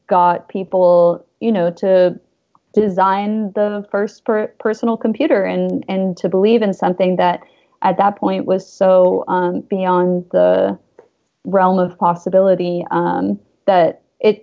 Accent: American